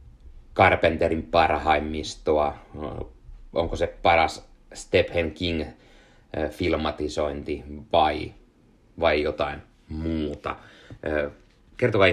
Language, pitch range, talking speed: Finnish, 75-105 Hz, 60 wpm